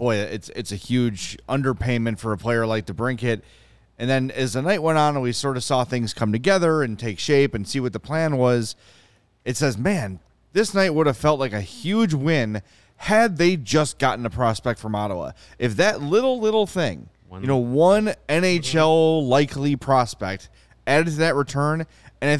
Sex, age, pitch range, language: male, 30-49, 115-155 Hz, English